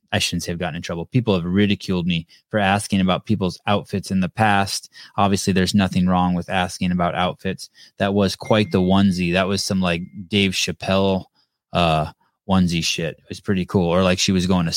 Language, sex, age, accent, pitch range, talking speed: English, male, 20-39, American, 95-120 Hz, 205 wpm